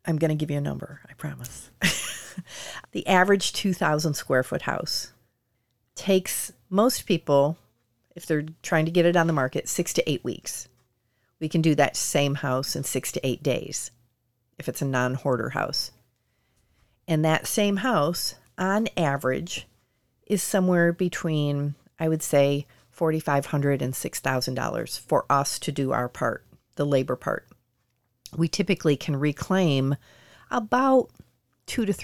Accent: American